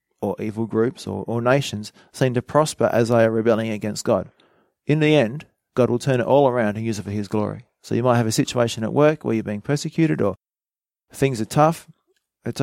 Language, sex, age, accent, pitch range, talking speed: English, male, 30-49, Australian, 105-130 Hz, 220 wpm